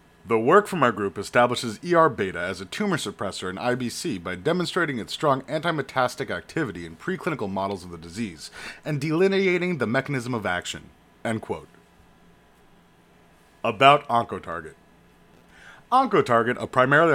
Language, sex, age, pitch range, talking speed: English, male, 30-49, 110-165 Hz, 135 wpm